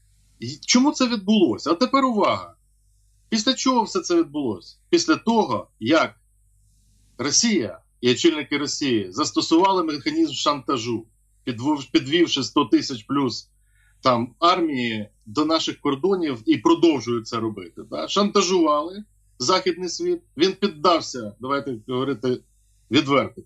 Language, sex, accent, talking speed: Ukrainian, male, native, 110 wpm